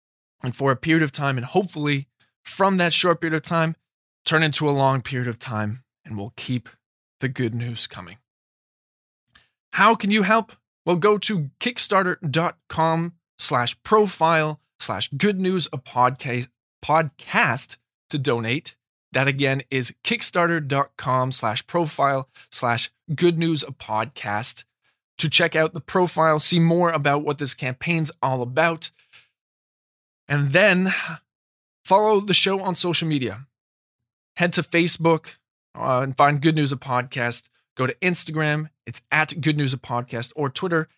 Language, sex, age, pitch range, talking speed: English, male, 20-39, 125-165 Hz, 140 wpm